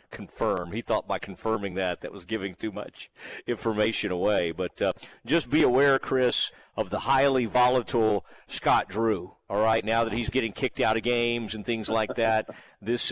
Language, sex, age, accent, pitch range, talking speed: English, male, 50-69, American, 110-135 Hz, 185 wpm